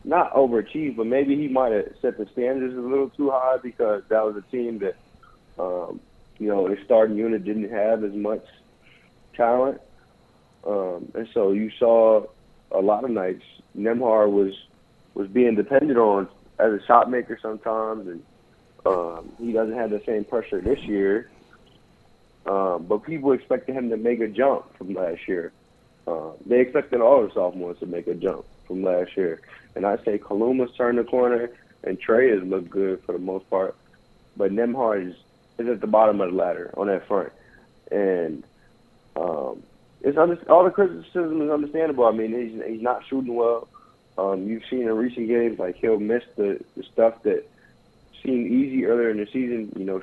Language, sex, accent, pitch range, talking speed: English, male, American, 110-125 Hz, 180 wpm